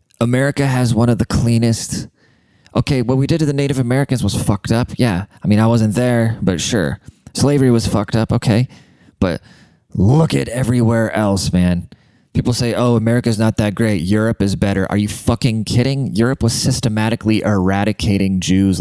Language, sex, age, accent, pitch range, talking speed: English, male, 20-39, American, 110-140 Hz, 175 wpm